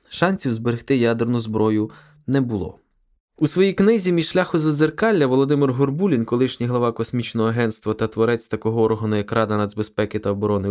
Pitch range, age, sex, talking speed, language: 110-150 Hz, 20-39, male, 150 wpm, Ukrainian